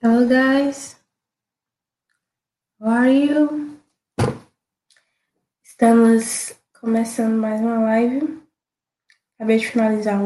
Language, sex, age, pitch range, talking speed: Portuguese, female, 10-29, 215-255 Hz, 75 wpm